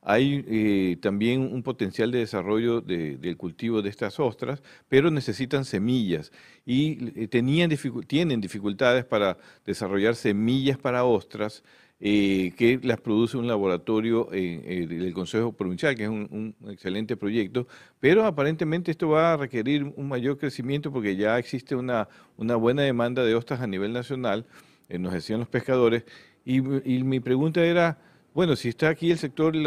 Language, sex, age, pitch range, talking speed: Spanish, male, 50-69, 105-135 Hz, 160 wpm